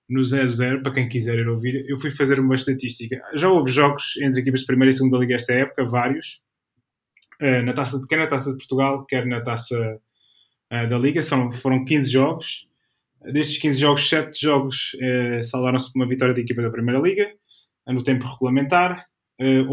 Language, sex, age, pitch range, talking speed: Portuguese, male, 20-39, 125-145 Hz, 200 wpm